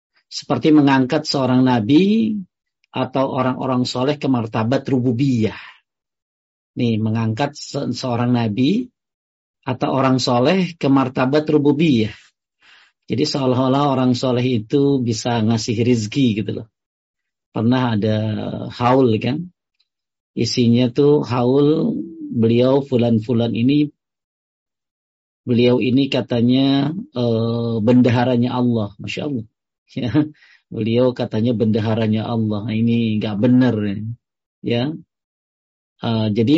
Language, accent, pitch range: Indonesian, native, 115-140 Hz